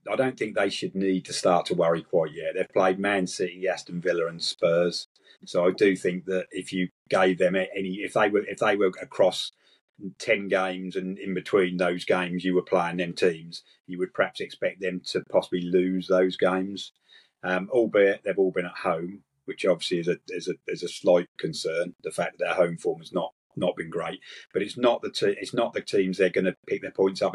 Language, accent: English, British